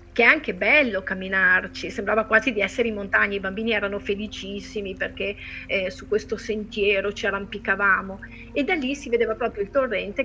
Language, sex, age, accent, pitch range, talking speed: Italian, female, 30-49, native, 180-235 Hz, 175 wpm